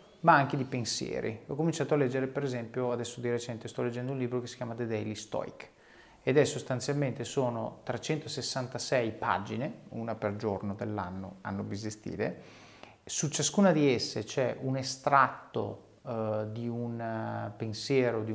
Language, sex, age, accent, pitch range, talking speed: Italian, male, 30-49, native, 110-135 Hz, 155 wpm